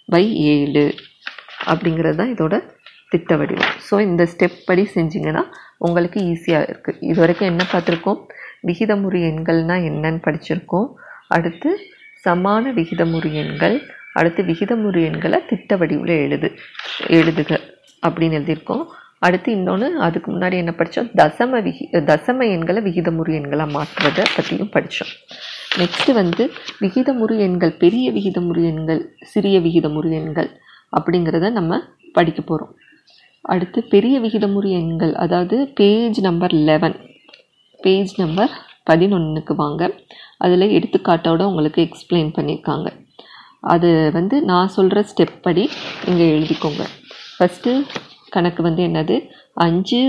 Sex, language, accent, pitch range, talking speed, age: female, Tamil, native, 165-205 Hz, 115 wpm, 30-49